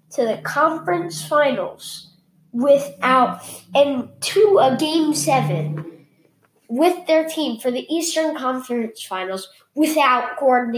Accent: American